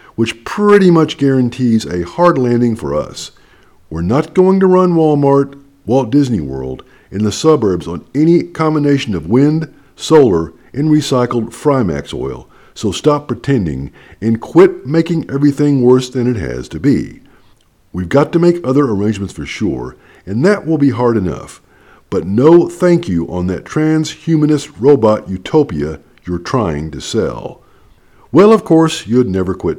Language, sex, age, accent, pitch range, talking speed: English, male, 50-69, American, 95-155 Hz, 155 wpm